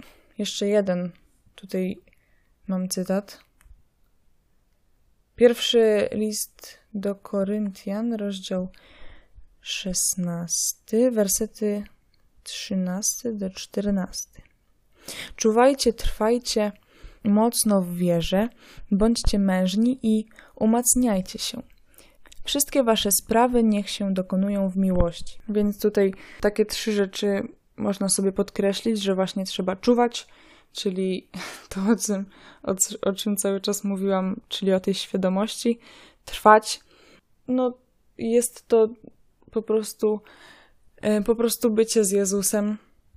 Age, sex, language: 20-39, female, Polish